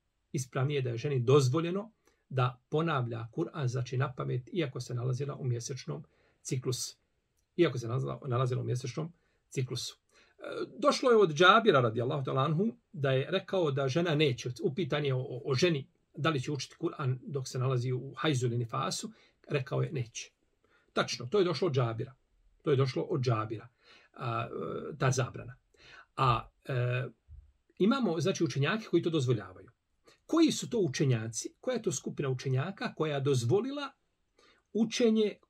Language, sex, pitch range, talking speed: English, male, 125-170 Hz, 150 wpm